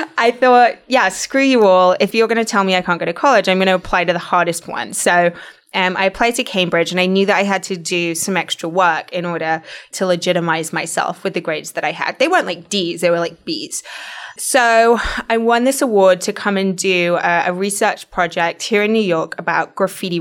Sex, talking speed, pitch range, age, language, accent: female, 240 wpm, 170-195 Hz, 20-39, English, British